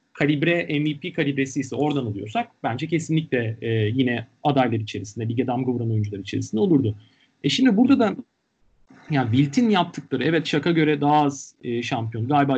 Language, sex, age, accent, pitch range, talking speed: Turkish, male, 40-59, native, 125-180 Hz, 155 wpm